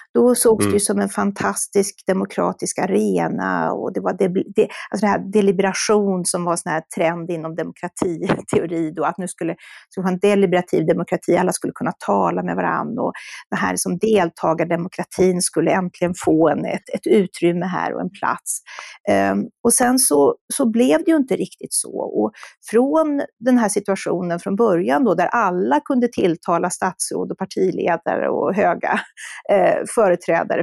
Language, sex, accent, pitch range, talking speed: Swedish, female, native, 185-230 Hz, 170 wpm